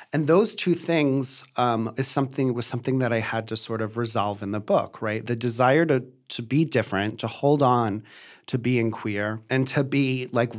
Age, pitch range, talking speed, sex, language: 30-49, 115-140 Hz, 205 wpm, male, English